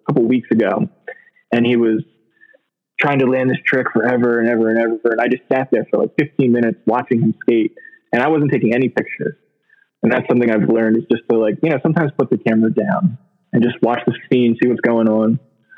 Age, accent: 20-39, American